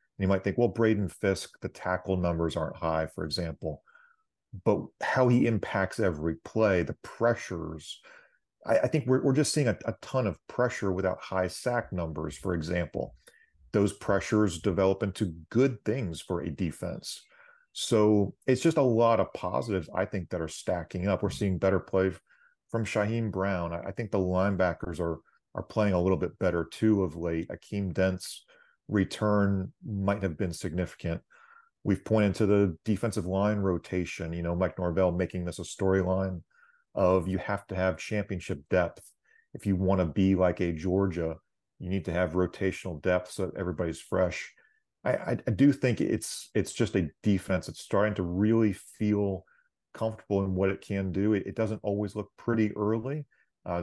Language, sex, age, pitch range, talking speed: English, male, 40-59, 90-110 Hz, 175 wpm